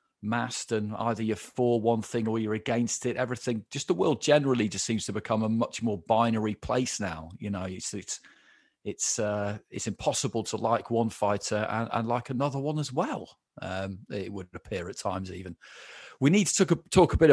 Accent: British